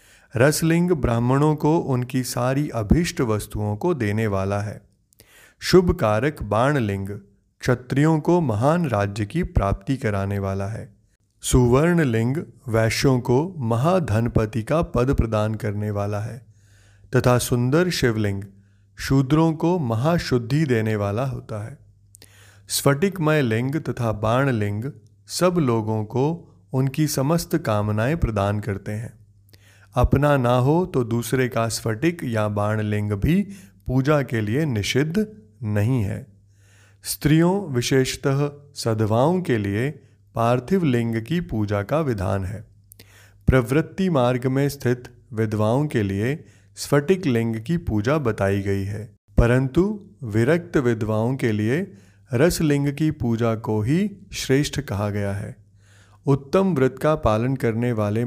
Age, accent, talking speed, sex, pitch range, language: 30-49, native, 125 wpm, male, 105-140 Hz, Hindi